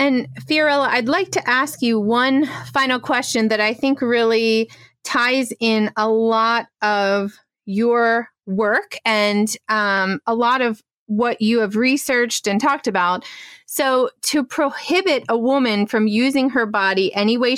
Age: 30-49